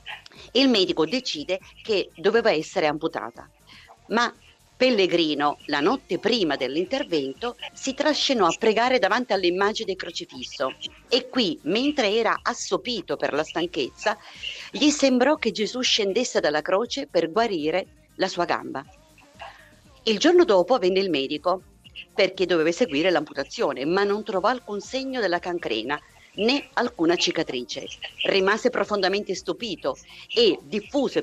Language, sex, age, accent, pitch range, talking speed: Italian, female, 50-69, native, 170-245 Hz, 125 wpm